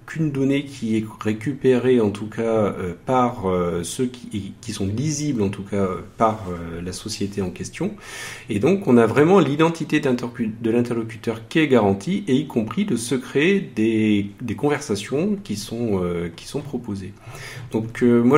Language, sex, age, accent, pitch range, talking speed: French, male, 40-59, French, 100-130 Hz, 180 wpm